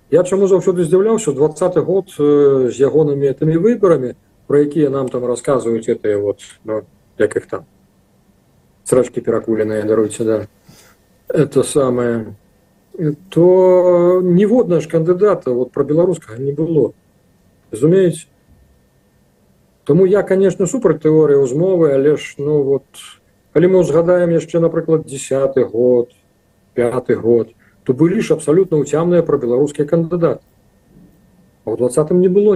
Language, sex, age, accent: Russian, male, 40-59, native